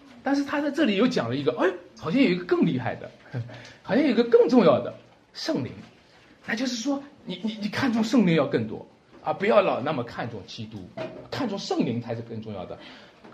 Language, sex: Chinese, male